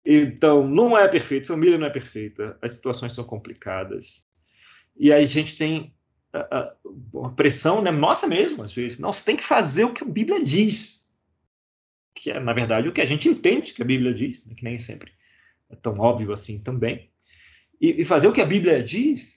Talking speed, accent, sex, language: 205 wpm, Brazilian, male, Portuguese